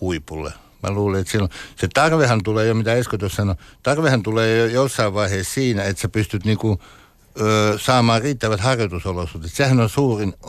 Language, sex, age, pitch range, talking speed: Finnish, male, 60-79, 95-110 Hz, 165 wpm